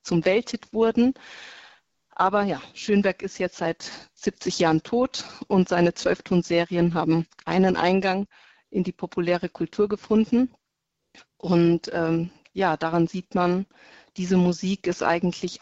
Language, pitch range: German, 175-215 Hz